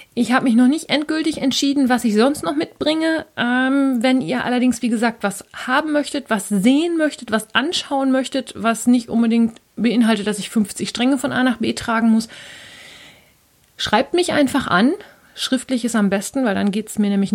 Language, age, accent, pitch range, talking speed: German, 30-49, German, 210-260 Hz, 190 wpm